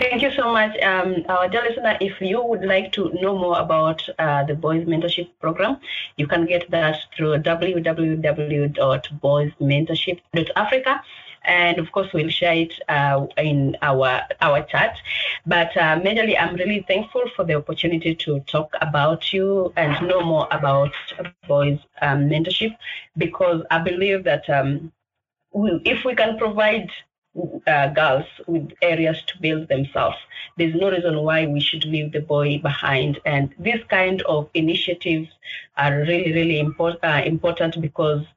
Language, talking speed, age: English, 150 wpm, 30-49